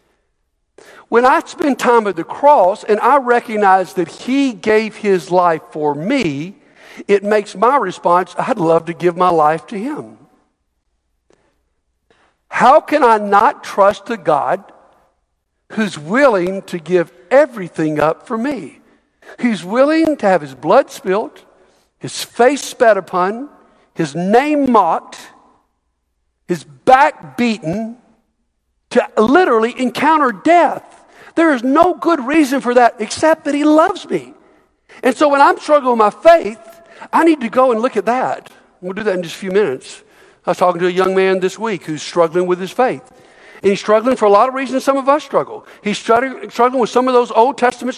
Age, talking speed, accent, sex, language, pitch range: 60-79, 170 wpm, American, male, English, 180-275 Hz